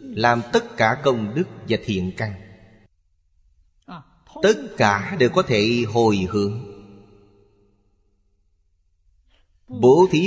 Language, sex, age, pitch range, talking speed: Vietnamese, male, 30-49, 95-120 Hz, 100 wpm